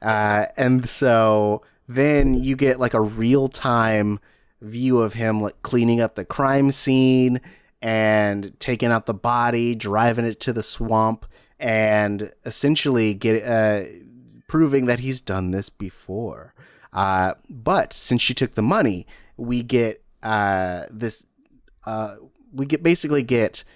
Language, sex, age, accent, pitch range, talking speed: English, male, 30-49, American, 110-155 Hz, 140 wpm